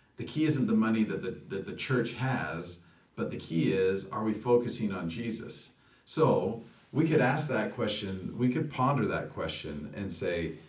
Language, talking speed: English, 185 wpm